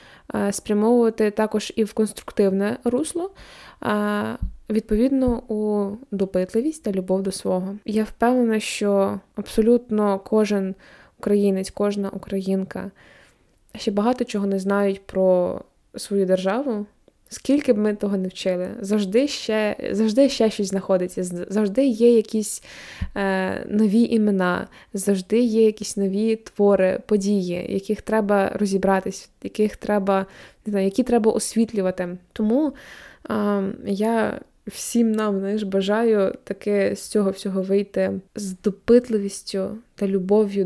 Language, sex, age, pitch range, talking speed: Ukrainian, female, 20-39, 195-225 Hz, 115 wpm